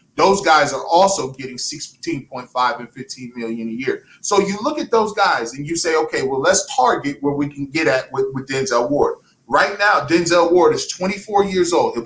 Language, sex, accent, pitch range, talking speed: English, male, American, 140-170 Hz, 205 wpm